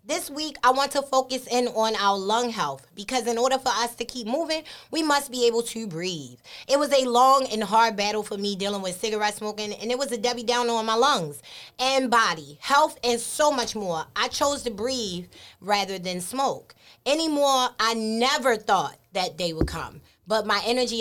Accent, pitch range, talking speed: American, 210-270 Hz, 205 wpm